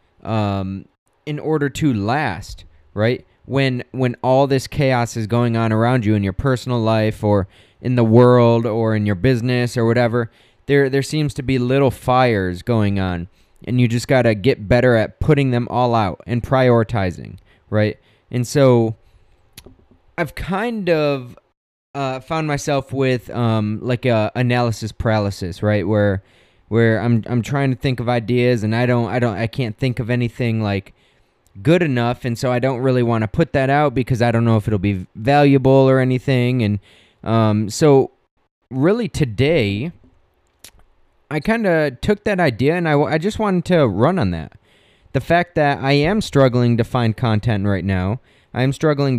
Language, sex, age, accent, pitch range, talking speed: English, male, 20-39, American, 110-135 Hz, 180 wpm